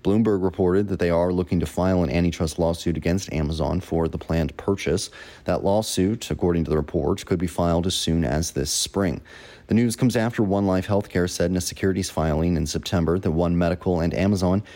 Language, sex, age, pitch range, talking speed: English, male, 30-49, 85-100 Hz, 205 wpm